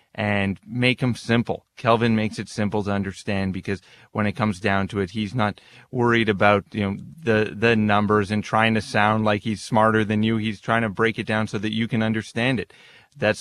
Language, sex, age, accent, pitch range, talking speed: English, male, 30-49, American, 100-115 Hz, 215 wpm